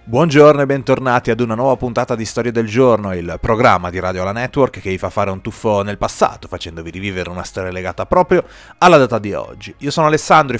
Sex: male